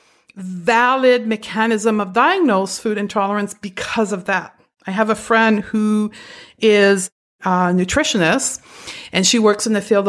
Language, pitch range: English, 195-240 Hz